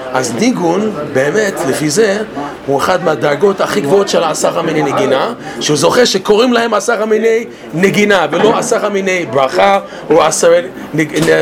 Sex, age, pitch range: male, 40-59, 150-210 Hz